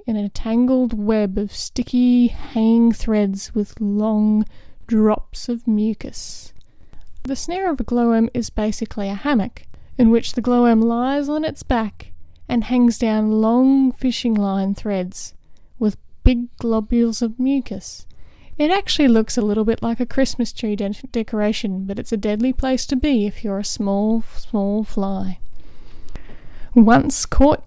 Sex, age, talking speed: female, 10-29, 145 wpm